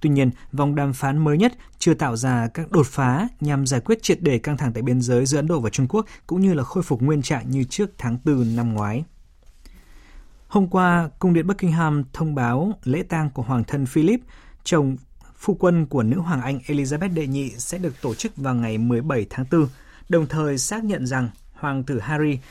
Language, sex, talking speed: Vietnamese, male, 220 wpm